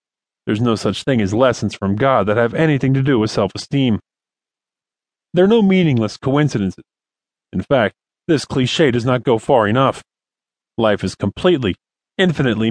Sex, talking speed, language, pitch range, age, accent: male, 155 wpm, English, 110-150 Hz, 30-49, American